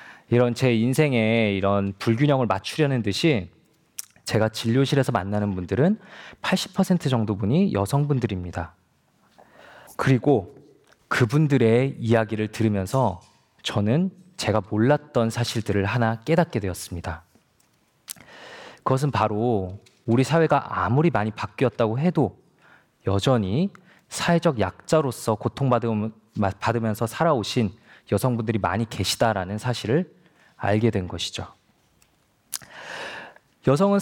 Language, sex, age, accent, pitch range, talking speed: English, male, 20-39, Korean, 105-150 Hz, 85 wpm